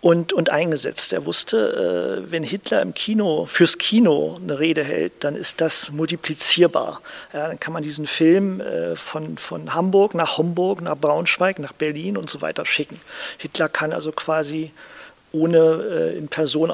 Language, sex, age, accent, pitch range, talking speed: German, male, 40-59, German, 150-170 Hz, 170 wpm